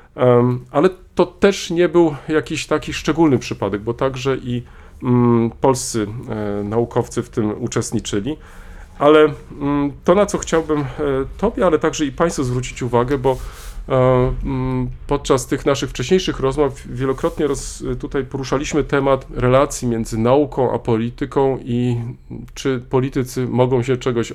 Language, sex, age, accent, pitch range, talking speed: Polish, male, 40-59, native, 115-155 Hz, 125 wpm